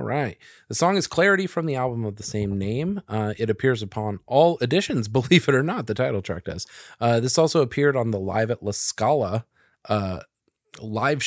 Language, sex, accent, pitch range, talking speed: English, male, American, 105-145 Hz, 210 wpm